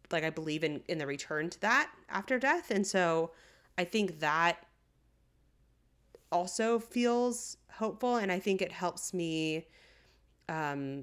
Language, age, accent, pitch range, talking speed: English, 30-49, American, 145-180 Hz, 140 wpm